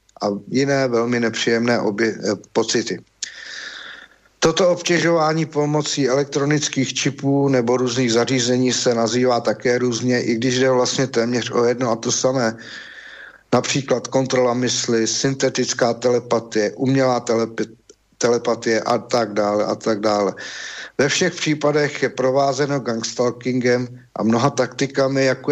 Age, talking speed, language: 50-69, 125 wpm, Slovak